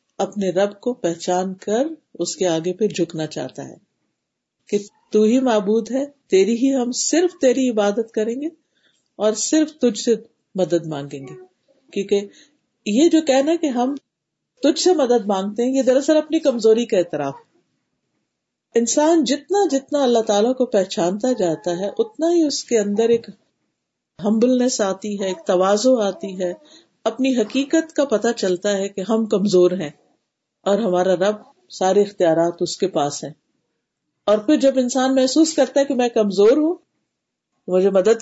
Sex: female